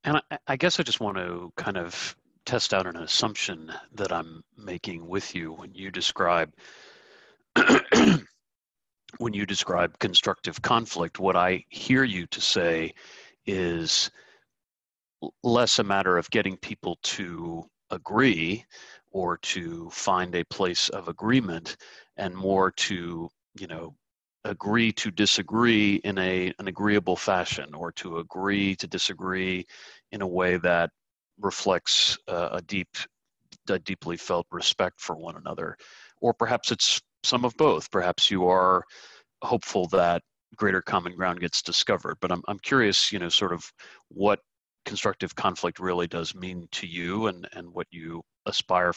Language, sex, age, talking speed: English, male, 40-59, 145 wpm